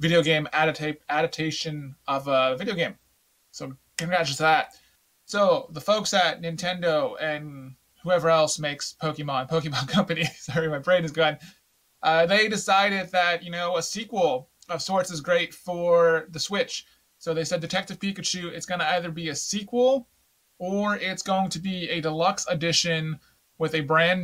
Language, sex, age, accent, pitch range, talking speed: English, male, 20-39, American, 155-185 Hz, 165 wpm